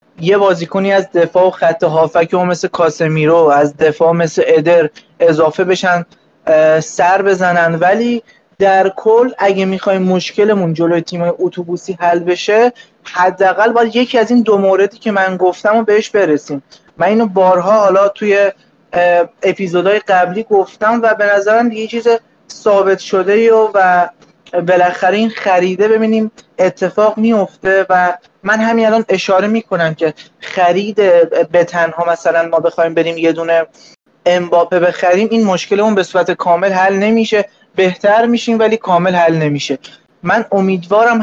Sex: male